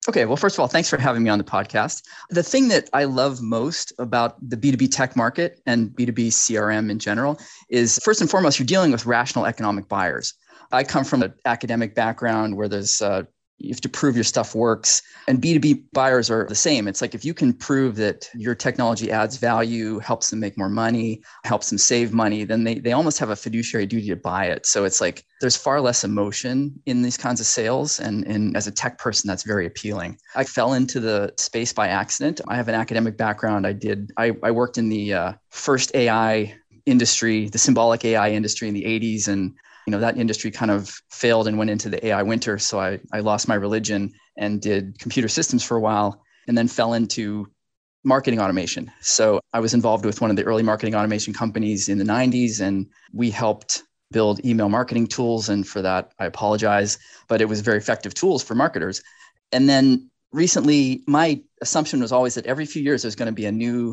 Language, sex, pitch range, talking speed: English, male, 105-125 Hz, 215 wpm